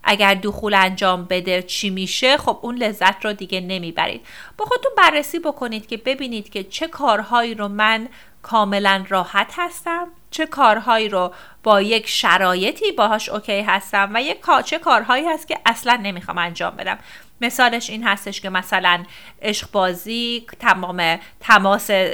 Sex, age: female, 30-49